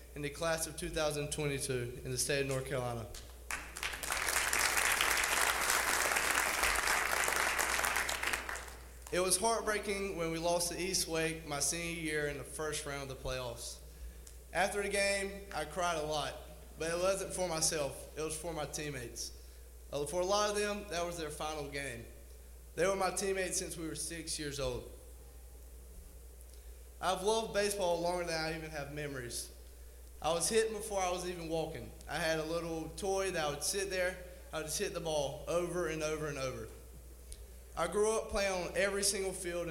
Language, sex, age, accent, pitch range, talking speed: English, male, 20-39, American, 115-180 Hz, 170 wpm